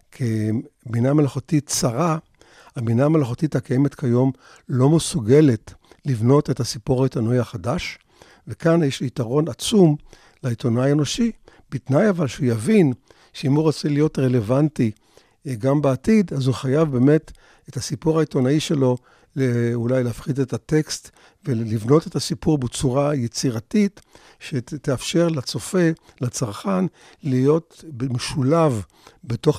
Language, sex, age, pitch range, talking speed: Hebrew, male, 50-69, 125-155 Hz, 110 wpm